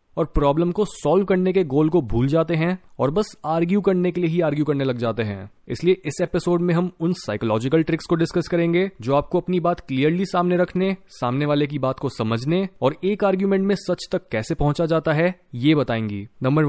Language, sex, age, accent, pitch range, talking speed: Hindi, male, 20-39, native, 135-180 Hz, 215 wpm